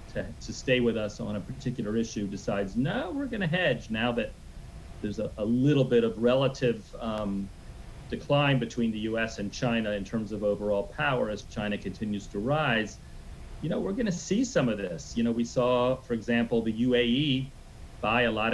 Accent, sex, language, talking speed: American, male, English, 190 wpm